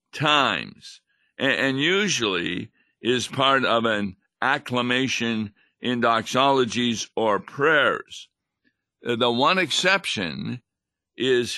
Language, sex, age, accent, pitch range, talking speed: English, male, 60-79, American, 115-140 Hz, 85 wpm